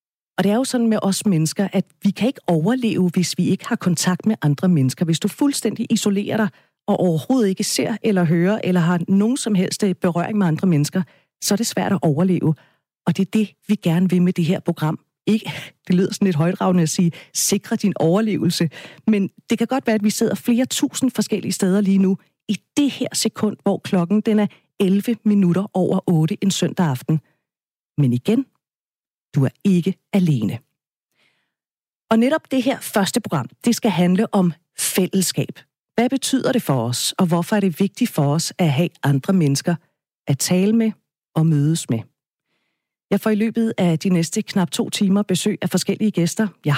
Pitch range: 170-210 Hz